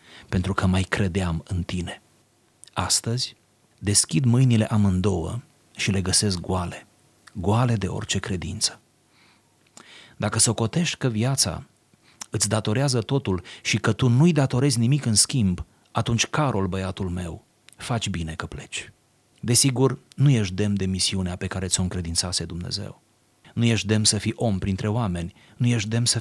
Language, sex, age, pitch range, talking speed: Romanian, male, 30-49, 95-120 Hz, 150 wpm